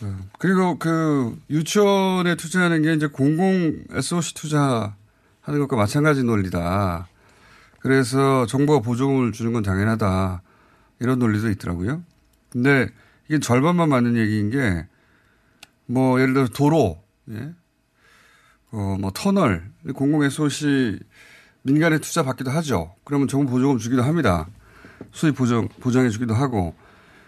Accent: native